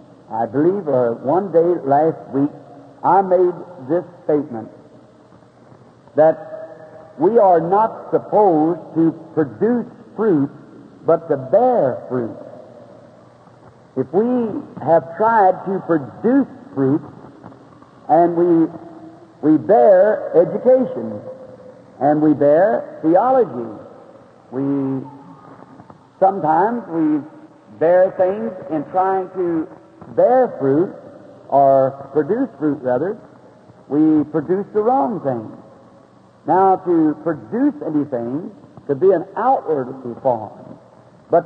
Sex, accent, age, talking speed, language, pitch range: male, American, 60-79, 100 wpm, English, 150-205 Hz